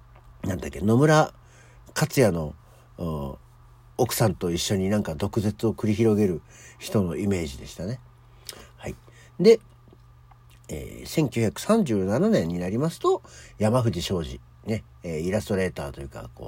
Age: 50-69